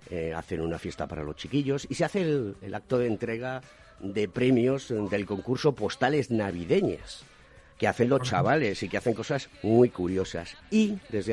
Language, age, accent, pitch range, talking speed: Spanish, 50-69, Spanish, 90-125 Hz, 175 wpm